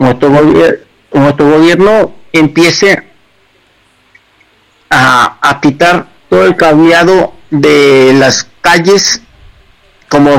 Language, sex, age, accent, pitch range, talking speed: English, male, 50-69, Mexican, 135-175 Hz, 75 wpm